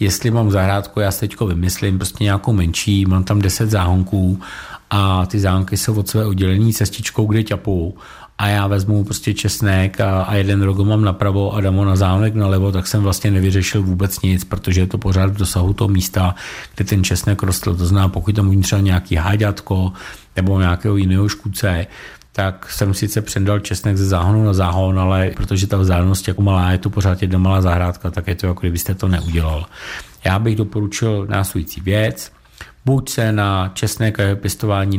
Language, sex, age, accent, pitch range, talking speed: Czech, male, 50-69, native, 95-105 Hz, 190 wpm